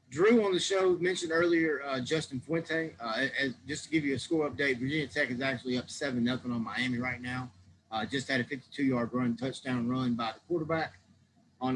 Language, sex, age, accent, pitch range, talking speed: English, male, 30-49, American, 120-150 Hz, 200 wpm